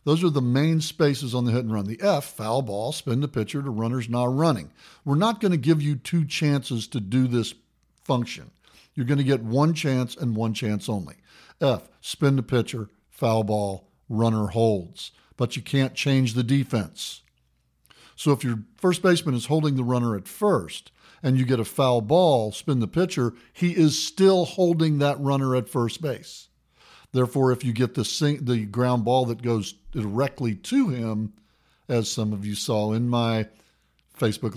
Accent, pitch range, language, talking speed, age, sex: American, 115-145 Hz, English, 190 wpm, 50-69, male